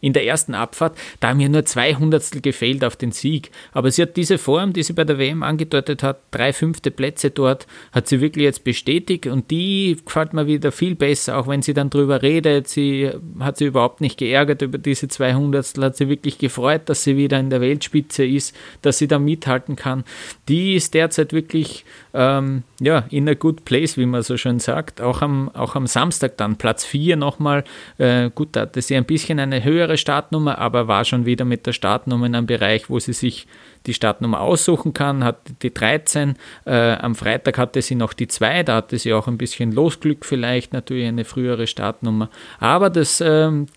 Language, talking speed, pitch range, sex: German, 205 wpm, 125-150 Hz, male